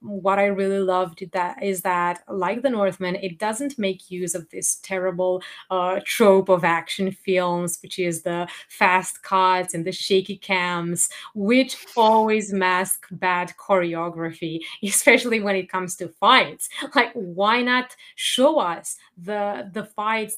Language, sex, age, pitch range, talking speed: English, female, 30-49, 180-205 Hz, 145 wpm